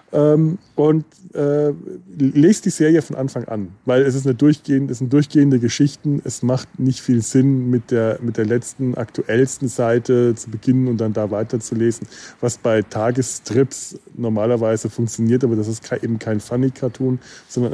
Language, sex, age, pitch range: German, male, 20-39, 110-135 Hz